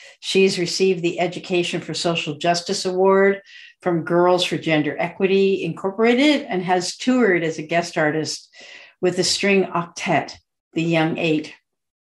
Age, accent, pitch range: 50-69, American, 170-200 Hz